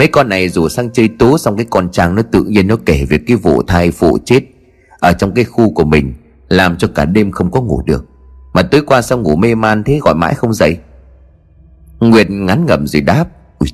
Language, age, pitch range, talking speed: Vietnamese, 30-49, 75-115 Hz, 235 wpm